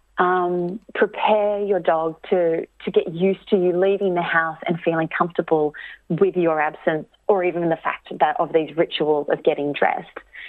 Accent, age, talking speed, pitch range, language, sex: Australian, 30-49, 170 wpm, 160-195 Hz, English, female